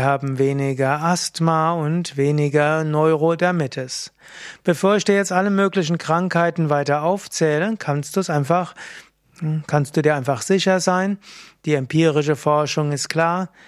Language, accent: German, German